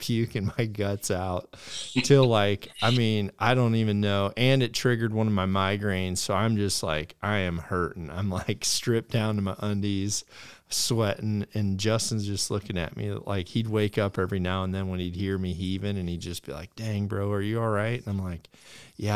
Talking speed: 215 wpm